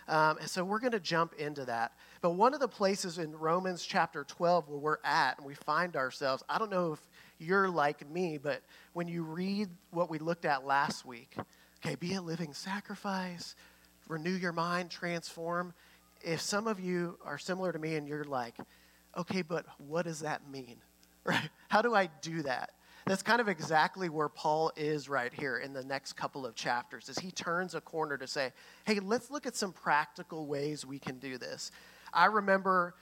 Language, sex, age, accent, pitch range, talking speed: English, male, 40-59, American, 150-185 Hz, 200 wpm